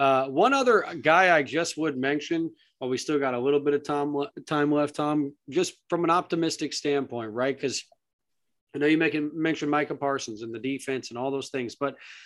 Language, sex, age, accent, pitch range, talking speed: English, male, 30-49, American, 145-185 Hz, 205 wpm